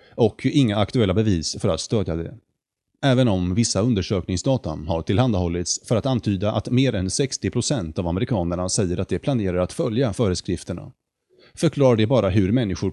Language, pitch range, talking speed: Swedish, 95-130 Hz, 160 wpm